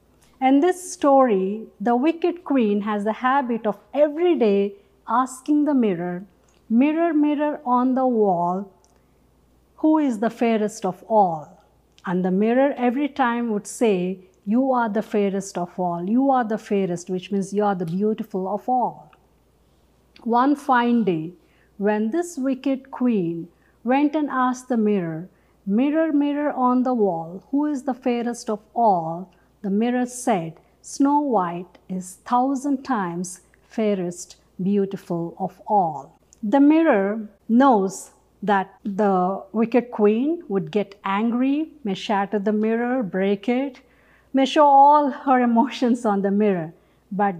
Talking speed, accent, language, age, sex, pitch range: 140 wpm, Indian, English, 50-69, female, 195-260 Hz